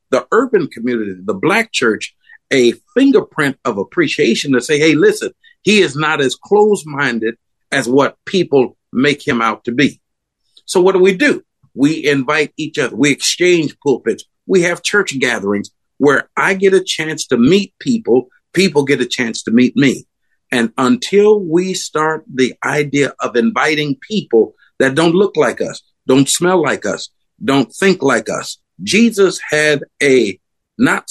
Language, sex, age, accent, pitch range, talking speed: English, male, 50-69, American, 130-190 Hz, 160 wpm